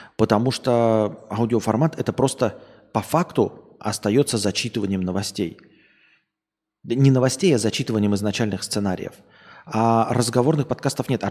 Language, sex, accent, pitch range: Russian, male, native, 105-140 Hz